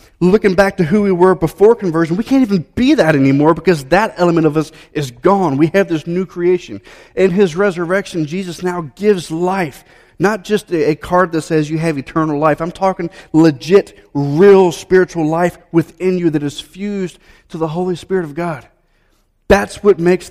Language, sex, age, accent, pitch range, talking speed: English, male, 30-49, American, 135-185 Hz, 185 wpm